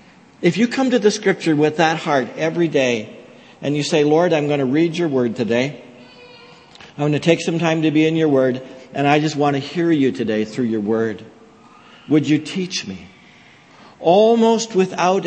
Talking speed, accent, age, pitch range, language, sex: 195 wpm, American, 60-79, 125-175 Hz, English, male